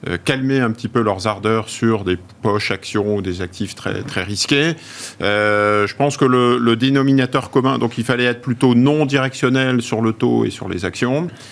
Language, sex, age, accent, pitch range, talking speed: French, male, 50-69, French, 110-135 Hz, 195 wpm